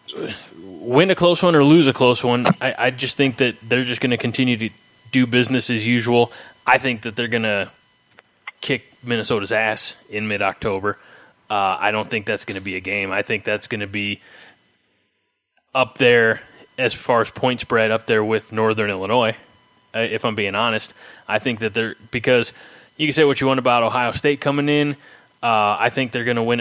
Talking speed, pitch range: 200 wpm, 110-130 Hz